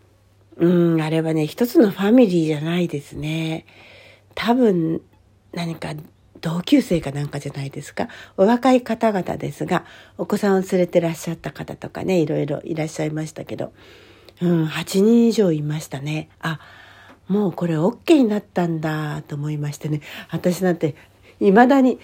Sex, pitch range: female, 150-210 Hz